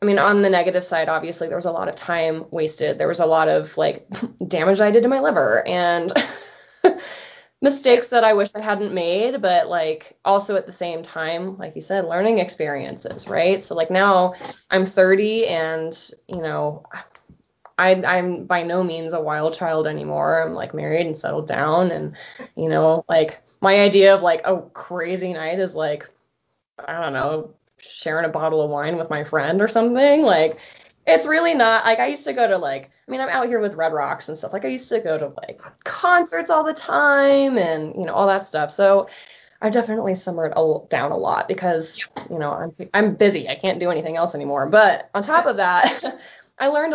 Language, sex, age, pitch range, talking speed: English, female, 20-39, 160-210 Hz, 205 wpm